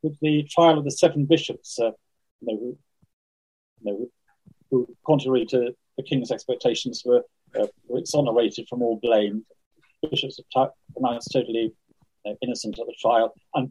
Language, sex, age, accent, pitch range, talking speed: English, male, 40-59, British, 120-155 Hz, 165 wpm